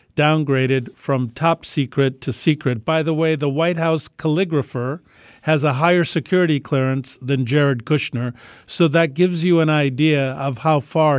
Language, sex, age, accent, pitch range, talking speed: English, male, 50-69, American, 140-180 Hz, 160 wpm